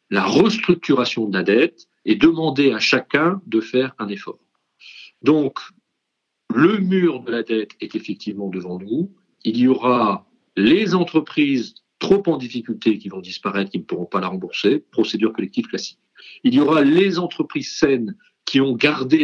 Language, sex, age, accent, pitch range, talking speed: French, male, 50-69, French, 110-170 Hz, 160 wpm